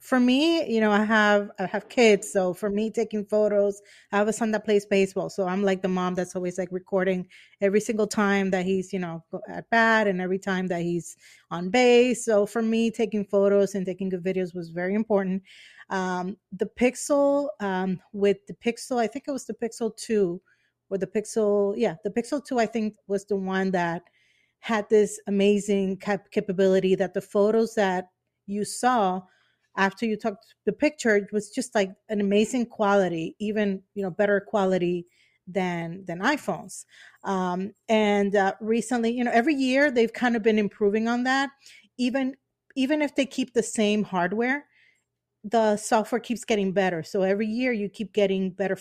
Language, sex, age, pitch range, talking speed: English, female, 30-49, 190-225 Hz, 185 wpm